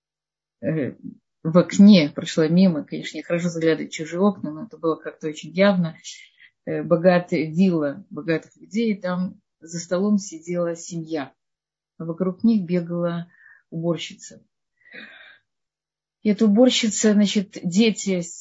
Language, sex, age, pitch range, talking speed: Russian, female, 30-49, 165-205 Hz, 115 wpm